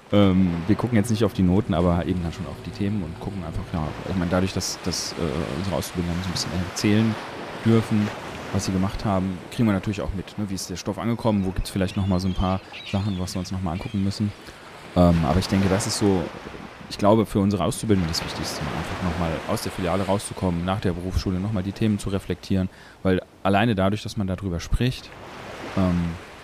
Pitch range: 90-105 Hz